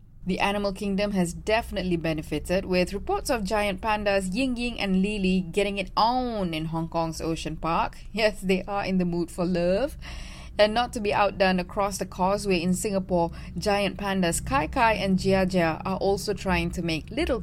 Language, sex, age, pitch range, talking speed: English, female, 20-39, 175-210 Hz, 185 wpm